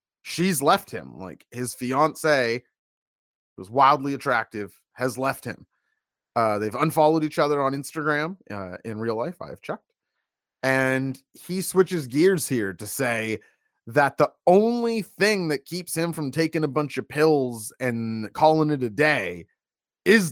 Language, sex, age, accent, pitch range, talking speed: English, male, 30-49, American, 125-160 Hz, 150 wpm